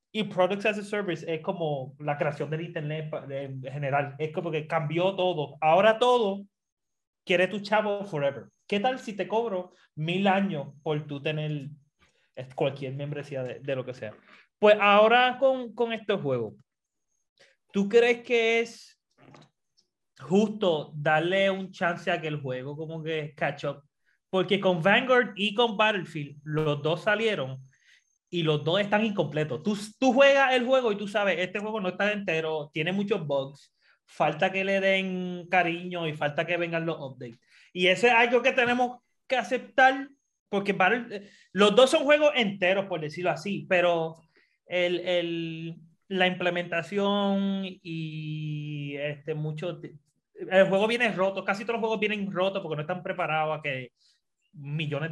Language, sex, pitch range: English, male, 155-210 Hz